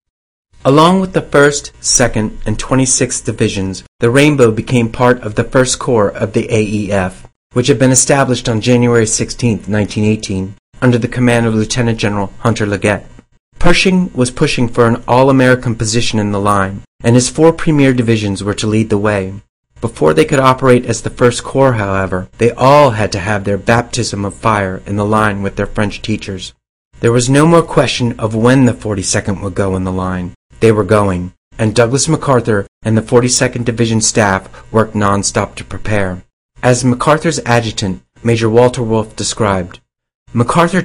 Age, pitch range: 40-59, 100-125 Hz